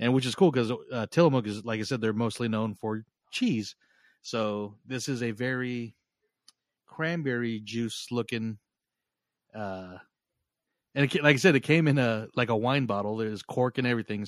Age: 30-49